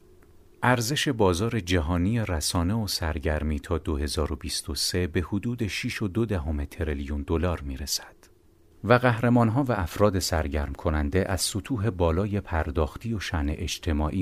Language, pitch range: Persian, 80-105 Hz